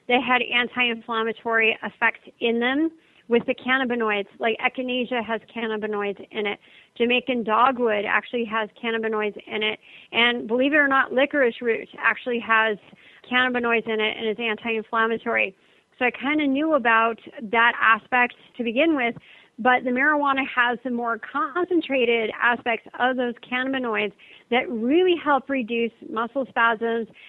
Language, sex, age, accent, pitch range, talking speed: English, female, 40-59, American, 225-250 Hz, 145 wpm